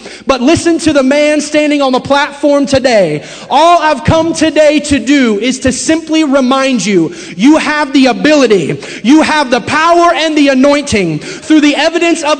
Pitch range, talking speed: 250-310 Hz, 175 wpm